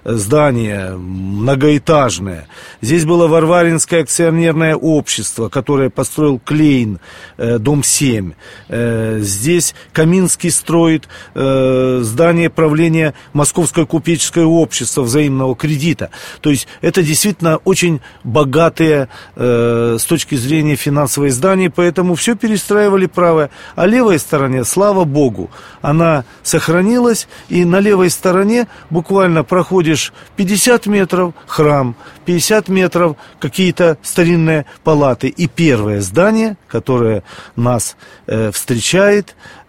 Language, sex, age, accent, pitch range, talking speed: Russian, male, 40-59, native, 125-175 Hz, 95 wpm